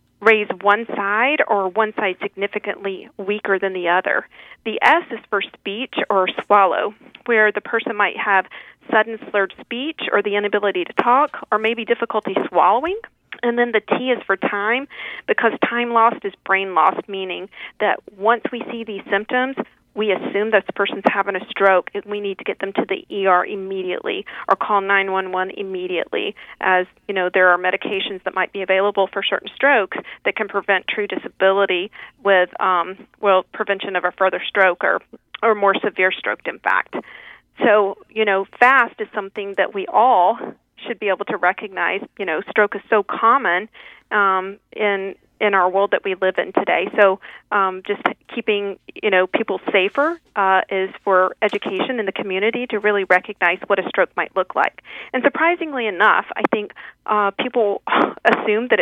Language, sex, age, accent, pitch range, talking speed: English, female, 40-59, American, 195-225 Hz, 175 wpm